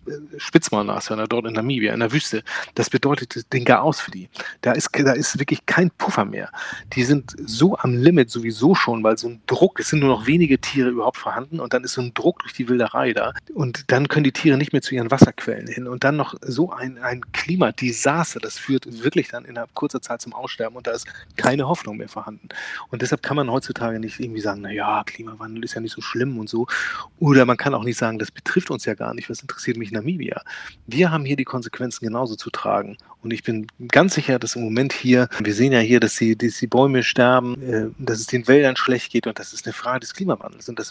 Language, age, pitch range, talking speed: German, 30-49, 115-130 Hz, 230 wpm